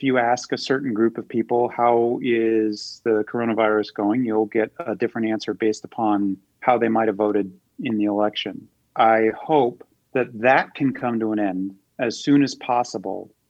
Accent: American